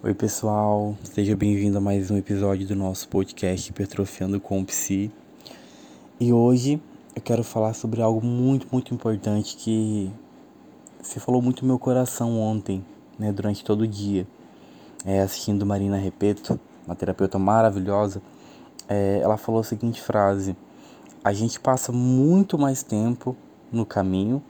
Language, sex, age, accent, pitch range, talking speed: Portuguese, male, 20-39, Brazilian, 100-120 Hz, 145 wpm